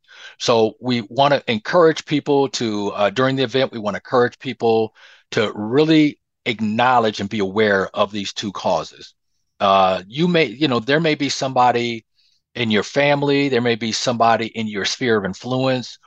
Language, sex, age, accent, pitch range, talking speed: English, male, 40-59, American, 100-125 Hz, 175 wpm